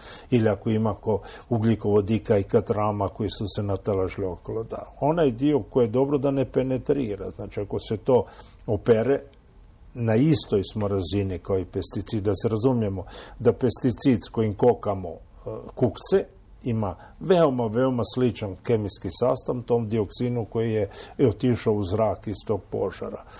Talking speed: 150 wpm